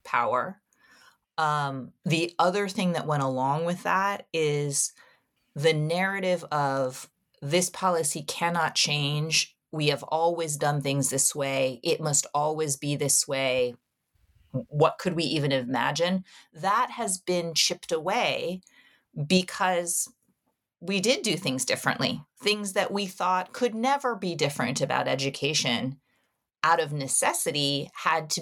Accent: American